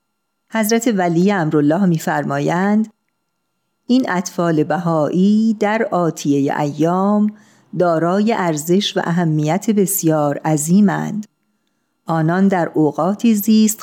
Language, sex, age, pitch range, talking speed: Persian, female, 50-69, 165-210 Hz, 85 wpm